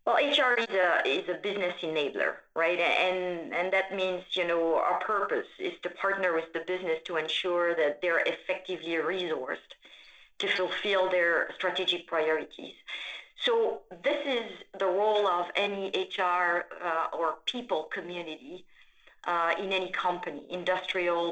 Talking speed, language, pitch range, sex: 140 wpm, English, 170-205 Hz, female